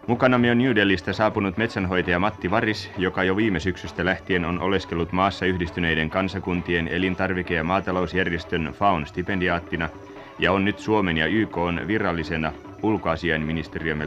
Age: 30-49